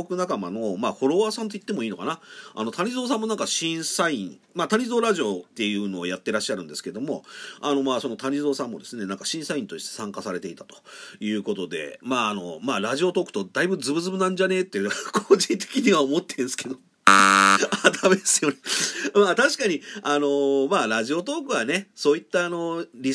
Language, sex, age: Japanese, male, 40-59